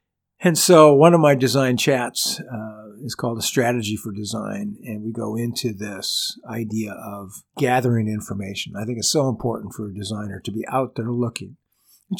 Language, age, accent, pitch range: English, 50-69, American, 105-170 Hz